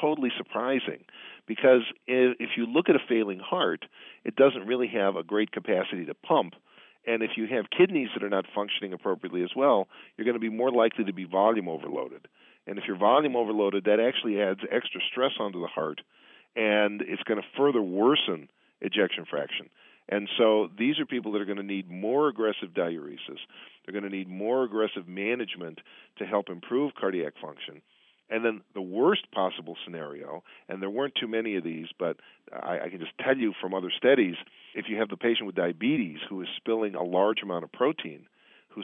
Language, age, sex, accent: English, 50-69, male, American